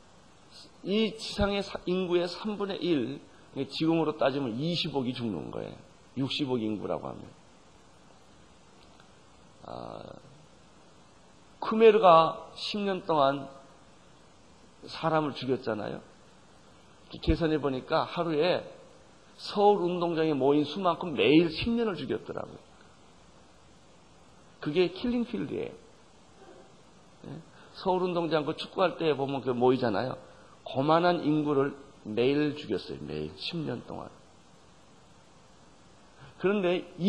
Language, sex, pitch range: Korean, male, 135-185 Hz